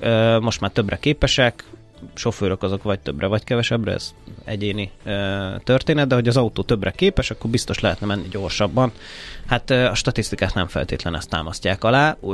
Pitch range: 100-120 Hz